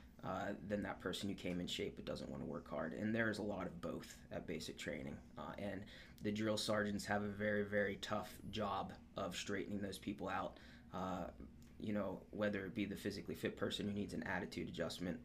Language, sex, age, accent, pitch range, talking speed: English, male, 20-39, American, 100-110 Hz, 215 wpm